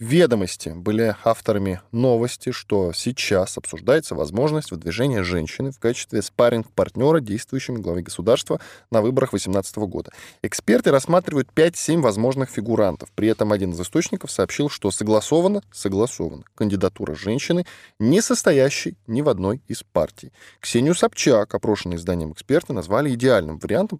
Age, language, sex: 20-39, Russian, male